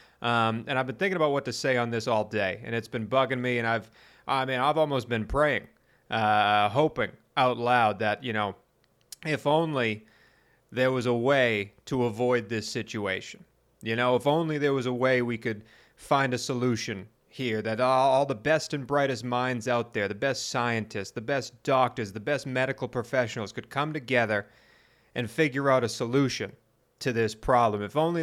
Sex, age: male, 30-49